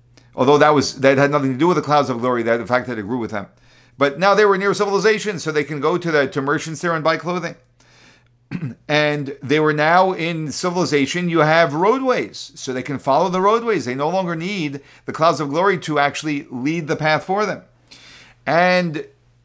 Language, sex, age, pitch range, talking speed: English, male, 40-59, 125-160 Hz, 215 wpm